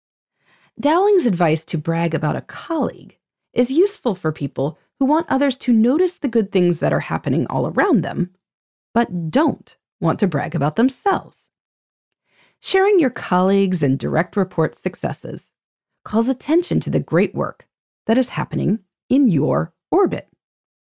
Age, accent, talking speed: 30-49, American, 145 wpm